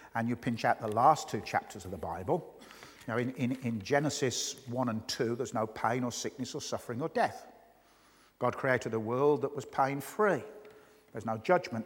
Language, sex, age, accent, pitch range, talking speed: English, male, 50-69, British, 125-175 Hz, 190 wpm